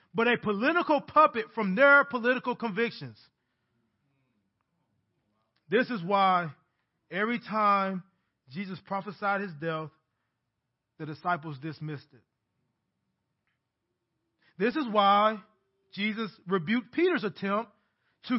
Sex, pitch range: male, 175-235 Hz